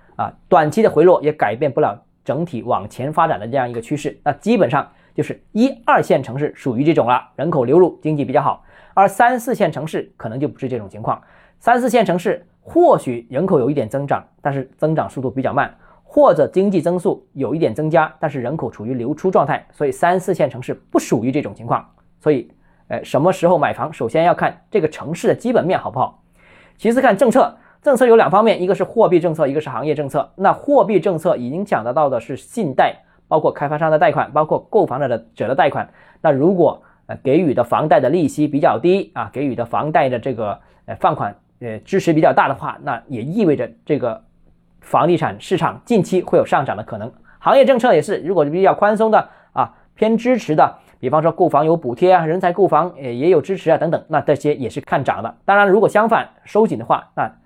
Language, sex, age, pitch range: Chinese, male, 20-39, 140-205 Hz